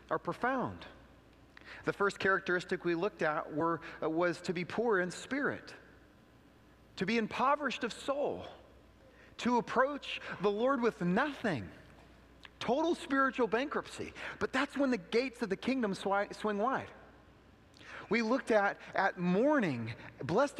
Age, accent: 30-49, American